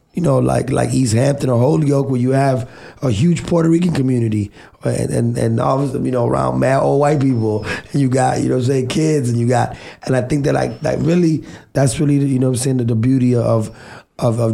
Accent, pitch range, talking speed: American, 120-140 Hz, 250 wpm